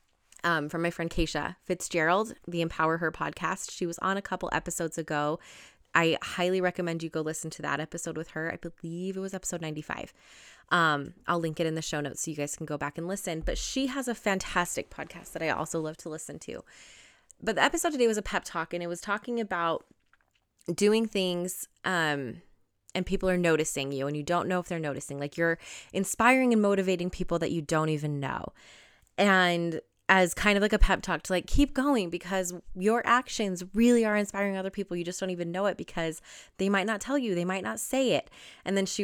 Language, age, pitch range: English, 20-39, 160-195 Hz